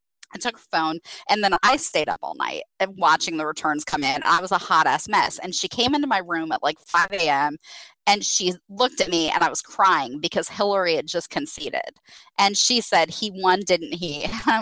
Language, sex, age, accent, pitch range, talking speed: English, female, 20-39, American, 170-235 Hz, 220 wpm